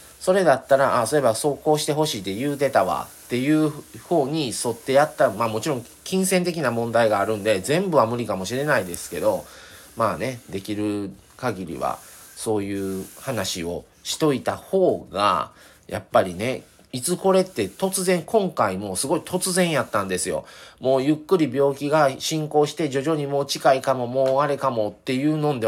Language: Japanese